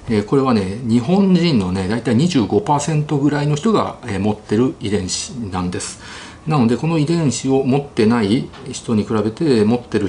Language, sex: Japanese, male